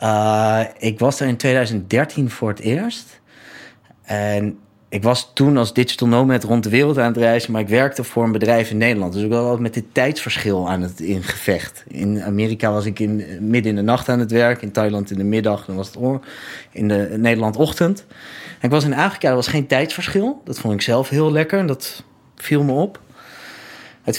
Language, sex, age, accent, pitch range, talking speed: Dutch, male, 30-49, Dutch, 105-130 Hz, 210 wpm